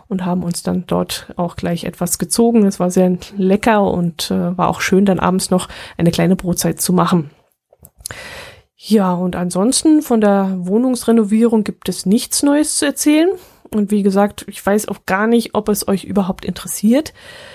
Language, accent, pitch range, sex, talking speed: German, German, 190-235 Hz, female, 175 wpm